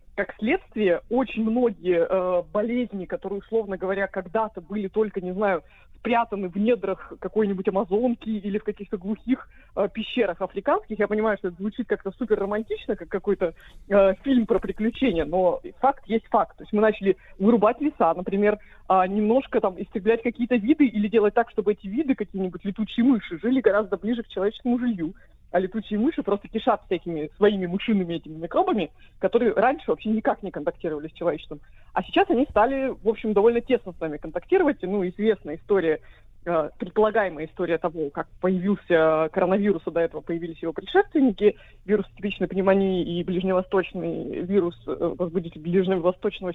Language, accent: Russian, native